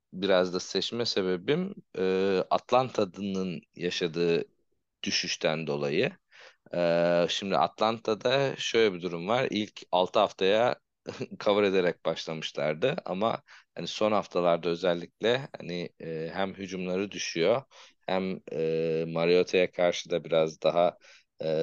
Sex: male